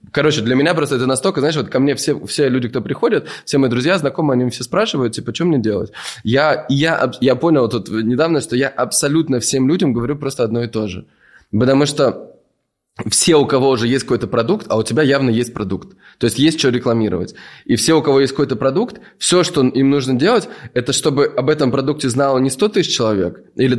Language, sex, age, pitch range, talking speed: Russian, male, 20-39, 120-145 Hz, 220 wpm